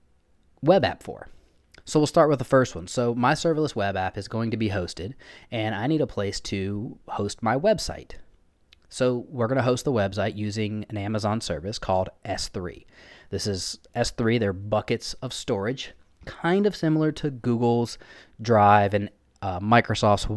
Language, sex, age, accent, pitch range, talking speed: English, male, 20-39, American, 95-125 Hz, 170 wpm